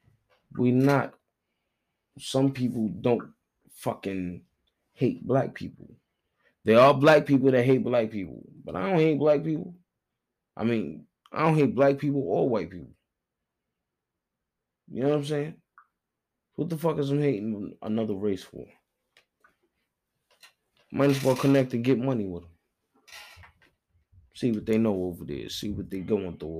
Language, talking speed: English, 150 wpm